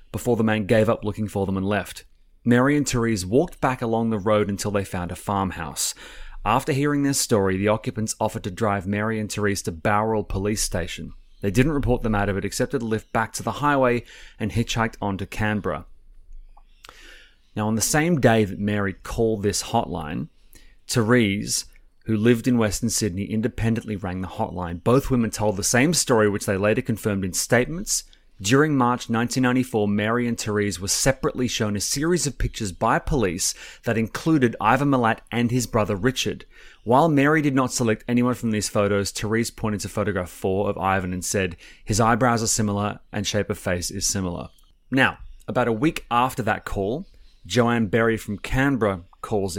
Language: English